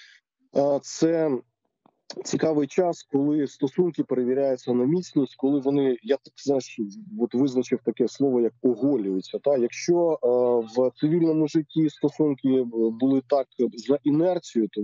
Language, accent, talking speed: Ukrainian, native, 120 wpm